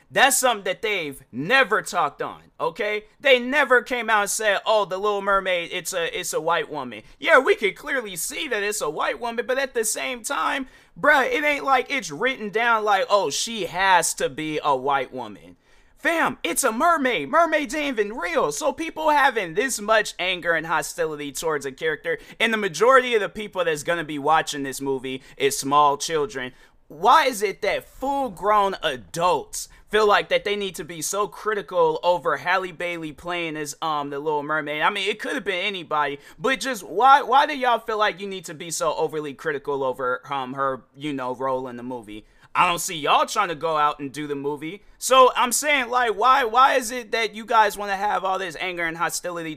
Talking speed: 215 wpm